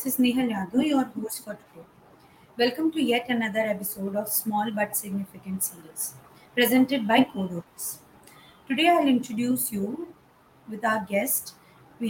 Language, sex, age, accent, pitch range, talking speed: Hindi, female, 20-39, native, 220-265 Hz, 145 wpm